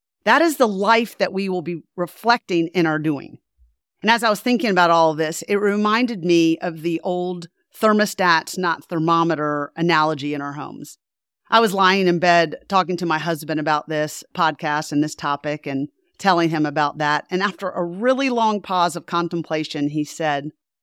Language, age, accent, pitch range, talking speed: English, 40-59, American, 160-215 Hz, 185 wpm